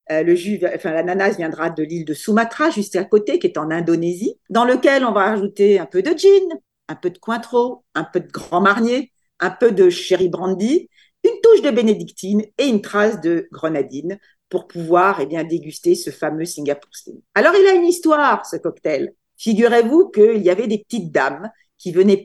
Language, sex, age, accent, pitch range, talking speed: French, female, 50-69, French, 175-235 Hz, 195 wpm